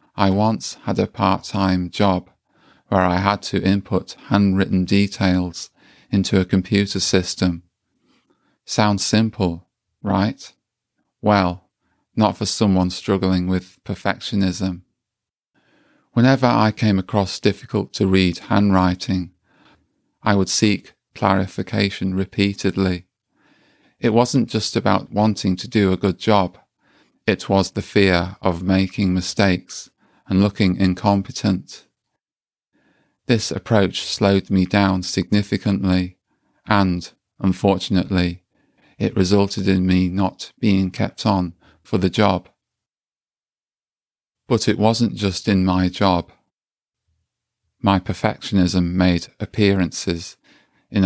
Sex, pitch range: male, 90-100 Hz